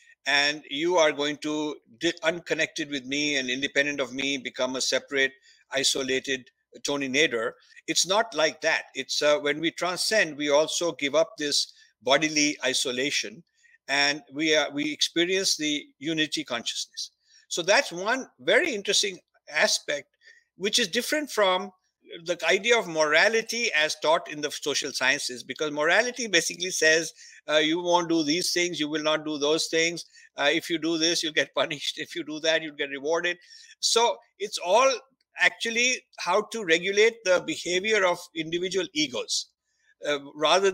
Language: English